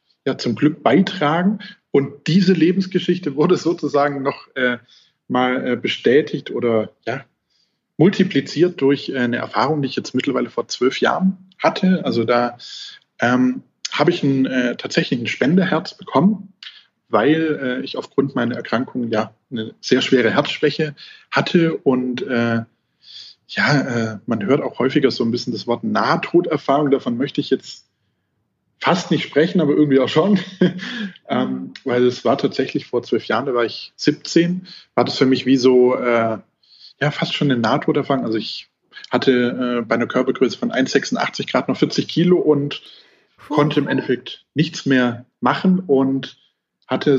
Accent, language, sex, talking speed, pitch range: German, German, male, 155 wpm, 125-165 Hz